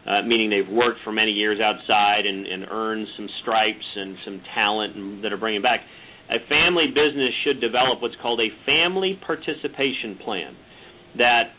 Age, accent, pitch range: 40-59, American, 115-145 Hz